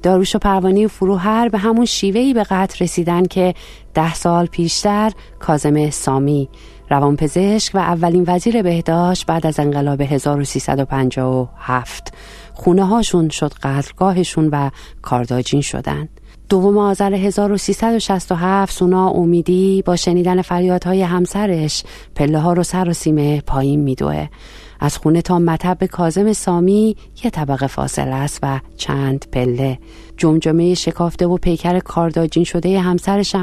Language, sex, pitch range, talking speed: Persian, female, 140-190 Hz, 125 wpm